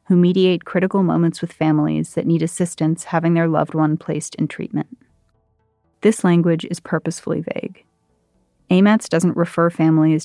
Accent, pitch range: American, 155-175 Hz